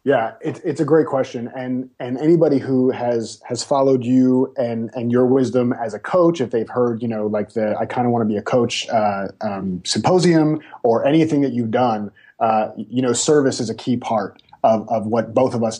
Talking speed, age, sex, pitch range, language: 215 wpm, 30-49, male, 115-135 Hz, English